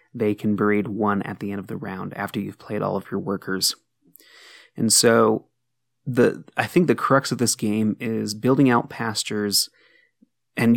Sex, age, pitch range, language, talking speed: male, 30-49, 105-125 Hz, English, 180 wpm